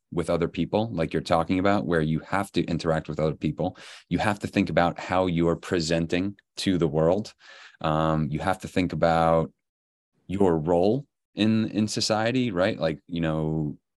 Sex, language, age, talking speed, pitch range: male, English, 30-49, 180 wpm, 80-90 Hz